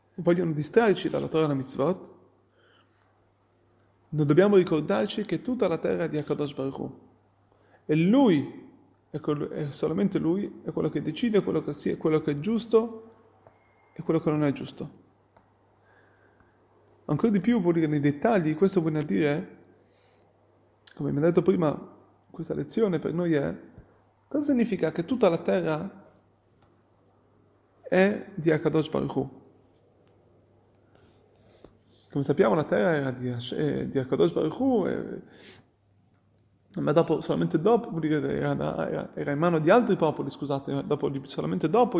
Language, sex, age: Italian, male, 30-49